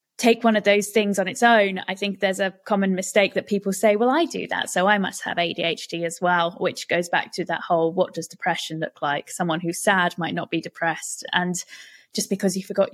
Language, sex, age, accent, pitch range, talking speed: English, female, 20-39, British, 175-210 Hz, 235 wpm